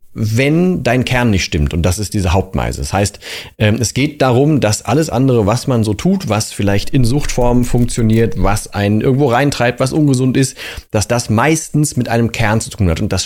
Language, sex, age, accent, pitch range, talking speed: German, male, 40-59, German, 100-135 Hz, 205 wpm